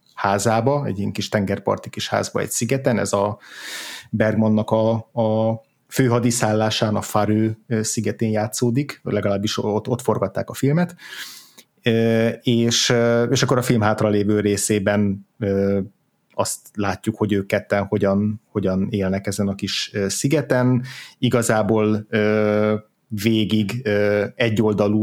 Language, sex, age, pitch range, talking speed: Hungarian, male, 30-49, 100-115 Hz, 110 wpm